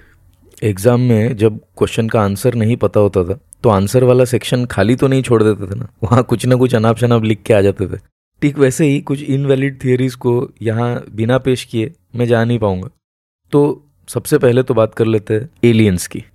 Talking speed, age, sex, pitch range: 210 wpm, 20-39, male, 105-125 Hz